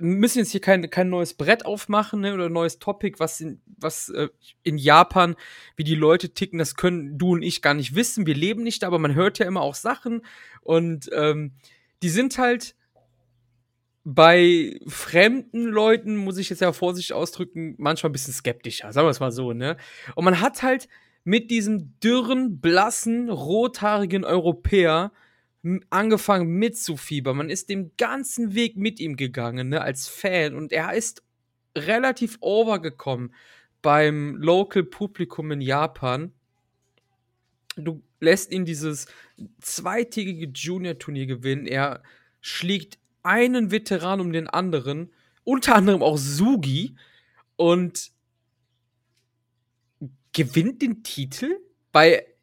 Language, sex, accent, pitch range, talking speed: German, male, German, 135-205 Hz, 140 wpm